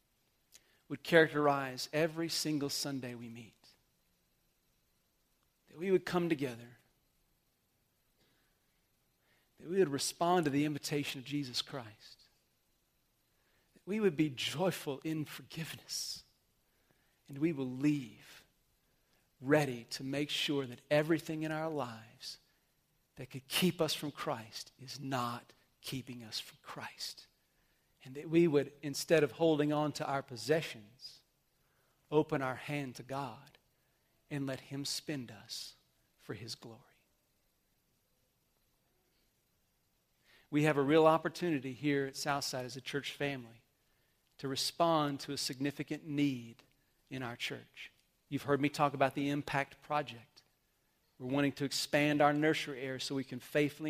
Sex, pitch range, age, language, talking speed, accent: male, 130-150 Hz, 40-59, English, 130 wpm, American